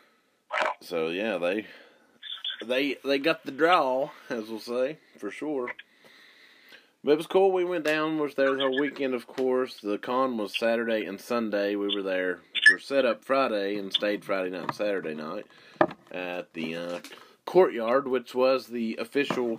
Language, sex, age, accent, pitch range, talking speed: English, male, 20-39, American, 105-130 Hz, 170 wpm